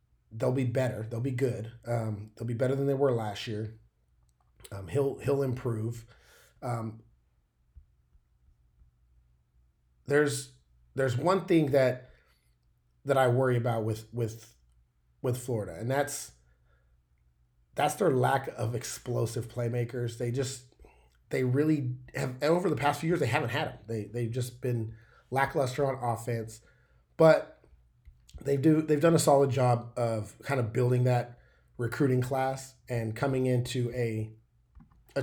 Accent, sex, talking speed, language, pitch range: American, male, 140 wpm, English, 105-135 Hz